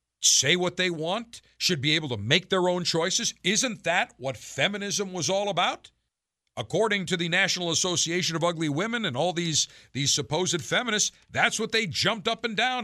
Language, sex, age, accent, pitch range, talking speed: English, male, 50-69, American, 150-205 Hz, 185 wpm